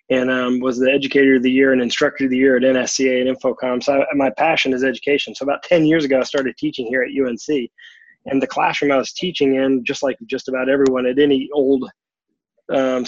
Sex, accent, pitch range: male, American, 130-140 Hz